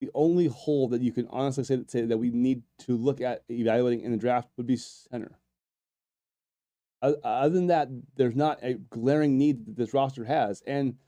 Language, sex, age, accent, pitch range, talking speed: English, male, 20-39, American, 120-145 Hz, 195 wpm